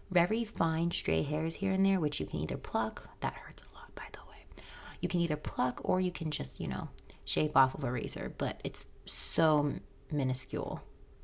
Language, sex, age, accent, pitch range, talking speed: English, female, 30-49, American, 145-190 Hz, 205 wpm